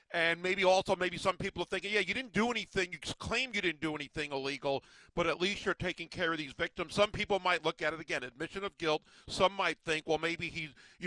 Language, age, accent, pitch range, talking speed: English, 50-69, American, 155-195 Hz, 250 wpm